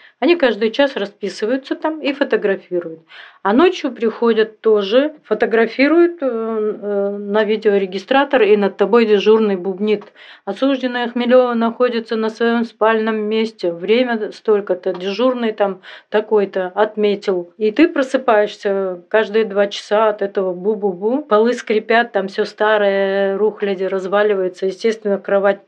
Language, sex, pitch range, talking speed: Russian, female, 200-245 Hz, 115 wpm